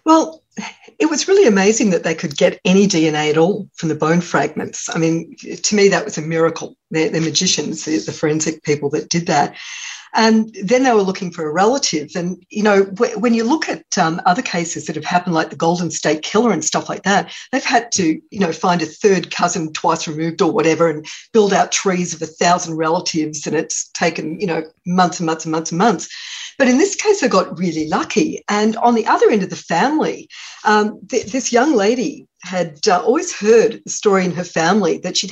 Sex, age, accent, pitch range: female, 50-69, Australian, 160-220 Hz